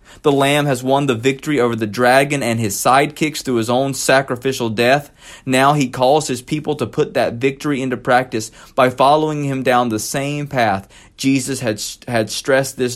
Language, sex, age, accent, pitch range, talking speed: English, male, 30-49, American, 115-140 Hz, 185 wpm